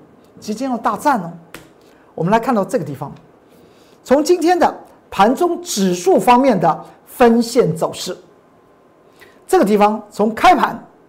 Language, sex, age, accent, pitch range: Chinese, male, 50-69, native, 195-285 Hz